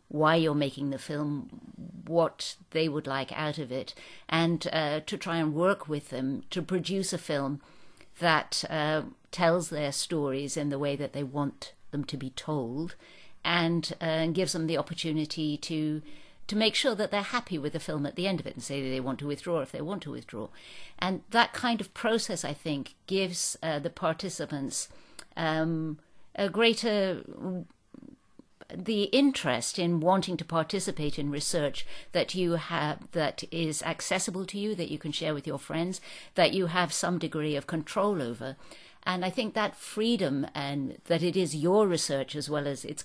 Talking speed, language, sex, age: 185 wpm, English, female, 50-69